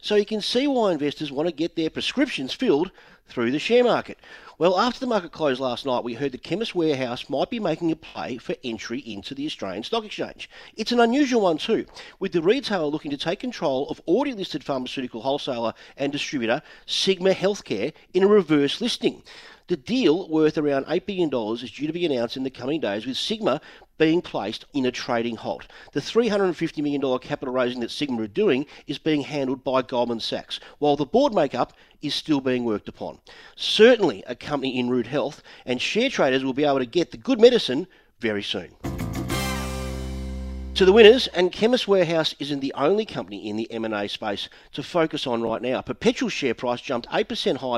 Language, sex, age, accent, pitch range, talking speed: English, male, 40-59, Australian, 120-180 Hz, 195 wpm